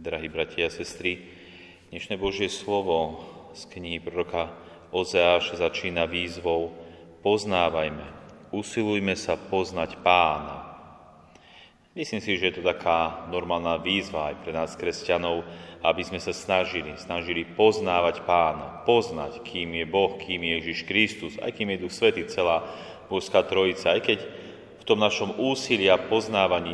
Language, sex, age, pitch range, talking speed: Slovak, male, 30-49, 85-100 Hz, 135 wpm